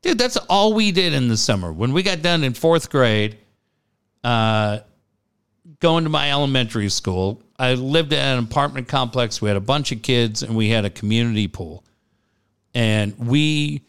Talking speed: 175 wpm